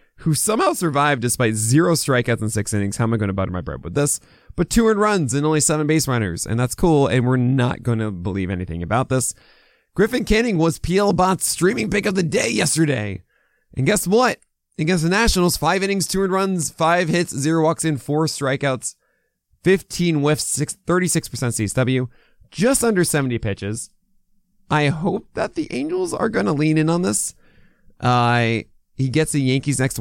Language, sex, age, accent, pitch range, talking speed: English, male, 20-39, American, 110-165 Hz, 190 wpm